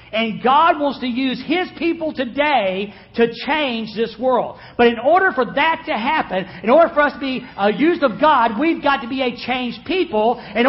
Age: 50-69